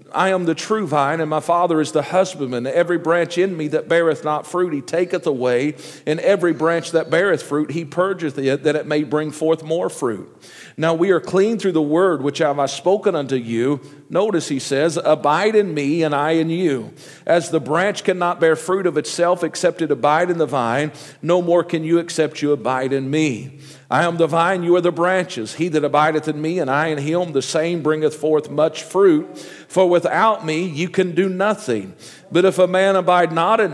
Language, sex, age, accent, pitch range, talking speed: English, male, 50-69, American, 150-180 Hz, 215 wpm